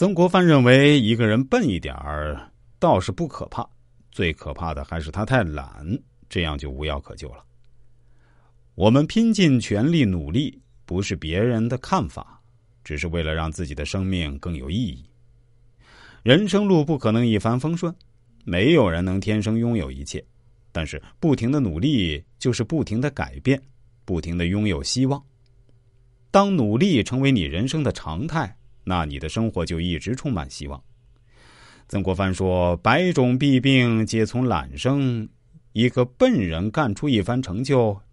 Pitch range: 90-130 Hz